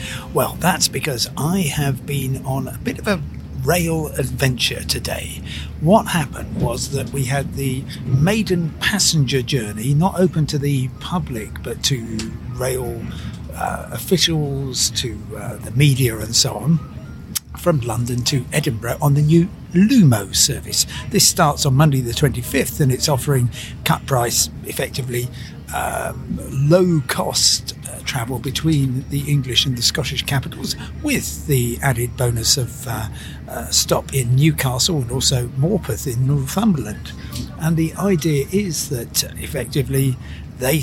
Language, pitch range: English, 120-150 Hz